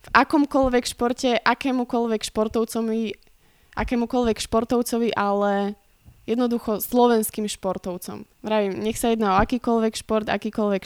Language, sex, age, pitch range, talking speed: Slovak, female, 20-39, 210-235 Hz, 105 wpm